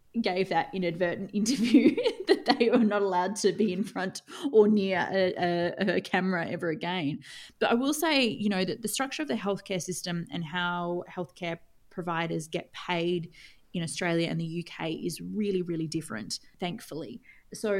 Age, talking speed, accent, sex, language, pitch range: 20-39, 170 wpm, Australian, female, English, 165-200 Hz